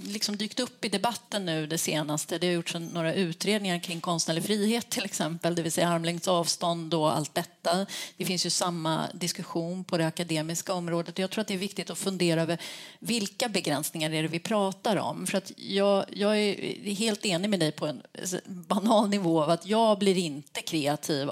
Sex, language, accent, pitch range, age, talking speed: female, Swedish, native, 165-205 Hz, 30-49, 195 wpm